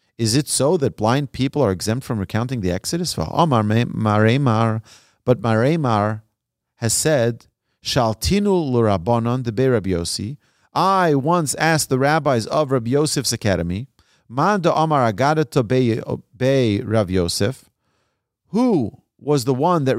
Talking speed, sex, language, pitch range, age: 125 wpm, male, English, 115-150 Hz, 40-59